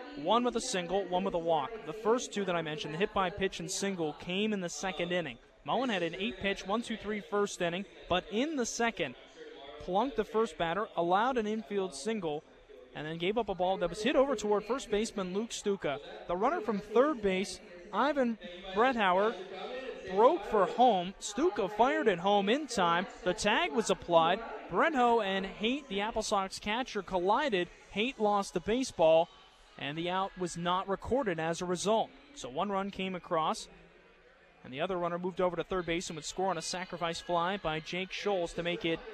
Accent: American